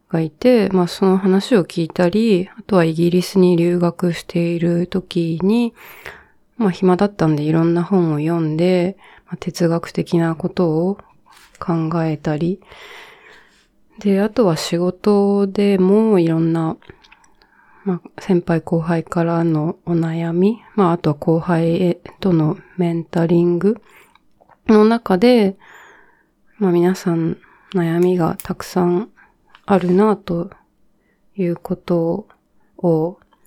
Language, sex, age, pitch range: Japanese, female, 20-39, 170-205 Hz